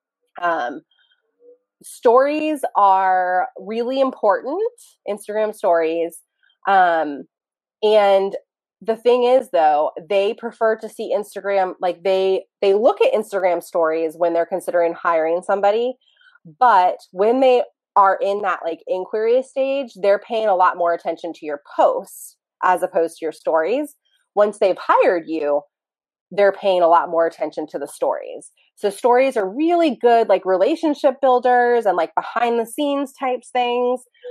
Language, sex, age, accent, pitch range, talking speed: English, female, 20-39, American, 175-250 Hz, 140 wpm